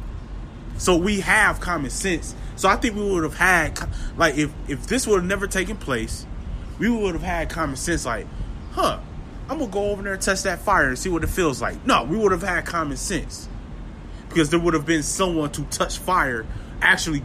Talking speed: 215 wpm